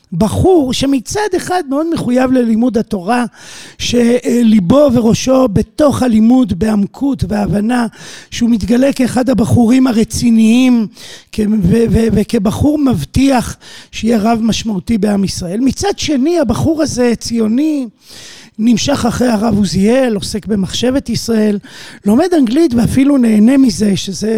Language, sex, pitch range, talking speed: Hebrew, male, 210-255 Hz, 115 wpm